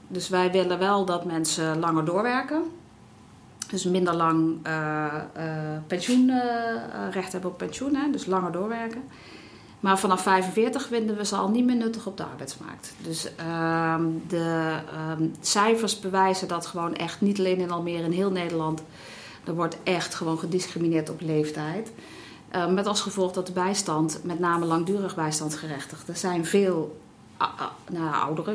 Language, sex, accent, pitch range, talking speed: Dutch, female, Dutch, 160-200 Hz, 155 wpm